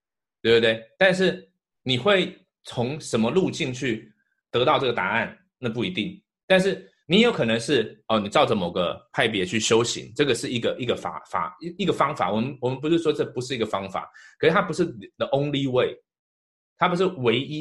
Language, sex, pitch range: Chinese, male, 115-175 Hz